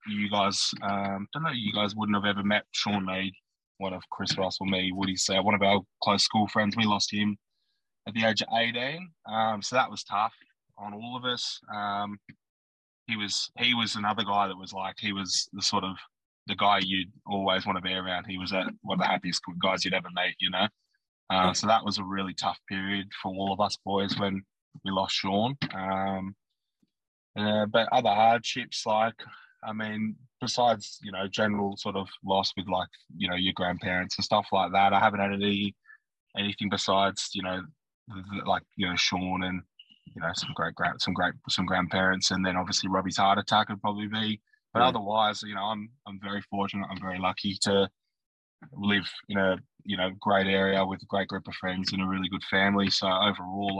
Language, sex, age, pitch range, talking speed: English, male, 20-39, 95-105 Hz, 210 wpm